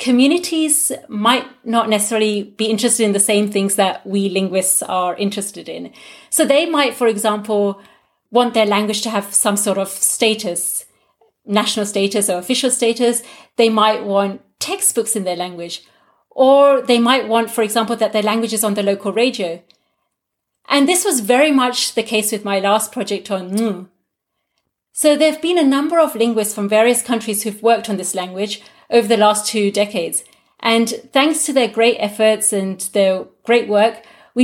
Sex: female